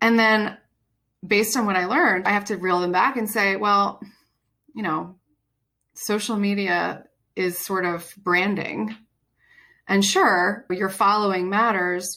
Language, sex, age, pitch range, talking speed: English, female, 30-49, 170-205 Hz, 145 wpm